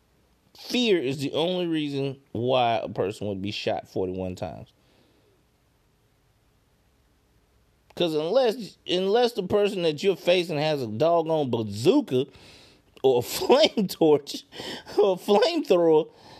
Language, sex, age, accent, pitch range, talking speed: English, male, 30-49, American, 125-200 Hz, 115 wpm